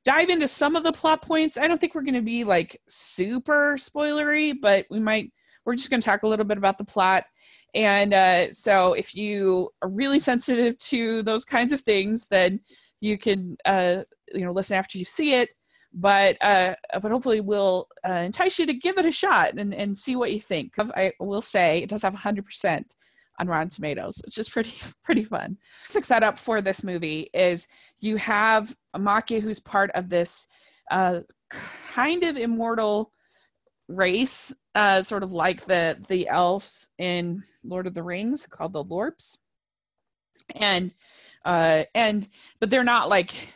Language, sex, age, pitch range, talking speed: English, female, 20-39, 185-255 Hz, 180 wpm